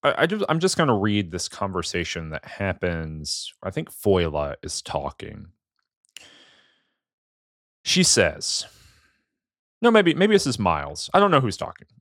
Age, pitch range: 30-49, 90-135 Hz